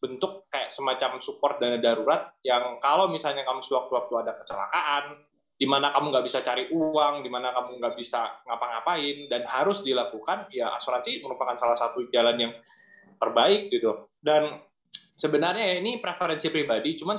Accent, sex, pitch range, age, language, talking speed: native, male, 130-190 Hz, 20-39, Indonesian, 155 wpm